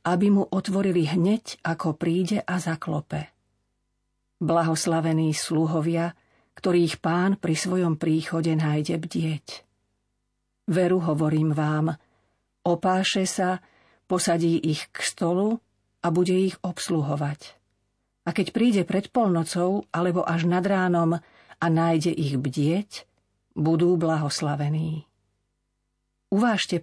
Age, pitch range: 50-69, 145-180 Hz